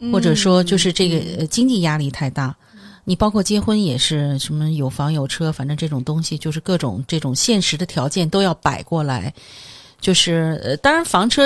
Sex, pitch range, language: female, 155-200 Hz, Chinese